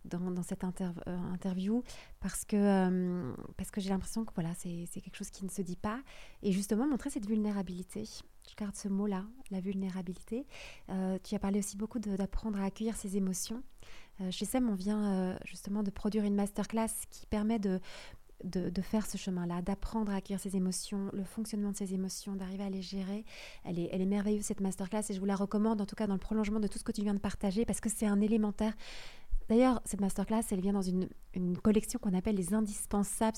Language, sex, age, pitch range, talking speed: French, female, 30-49, 185-220 Hz, 225 wpm